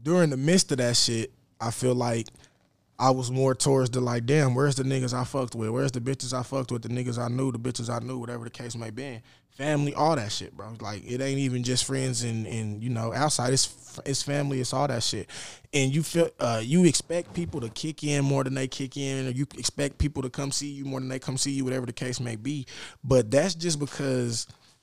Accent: American